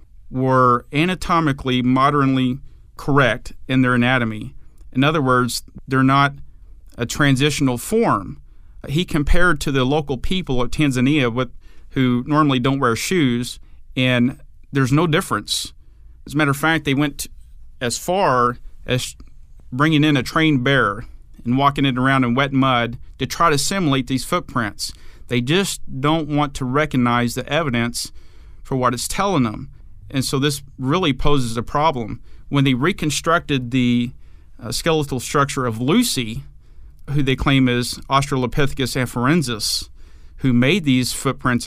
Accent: American